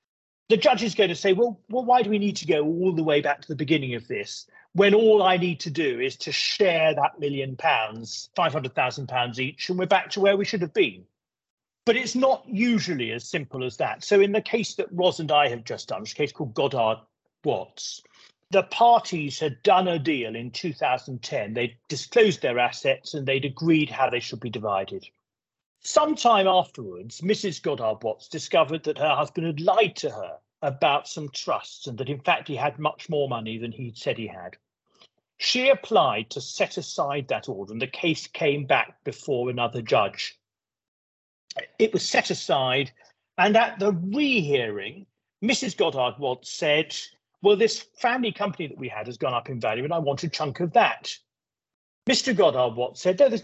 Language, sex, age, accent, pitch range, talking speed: English, male, 40-59, British, 130-205 Hz, 195 wpm